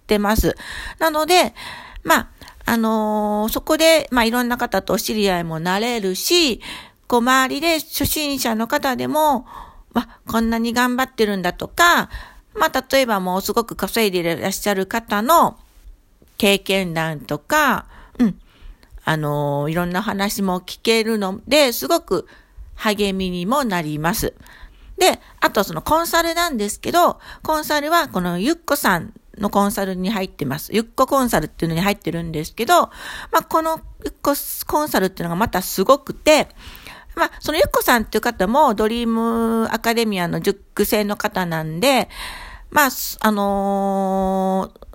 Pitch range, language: 195-275 Hz, Japanese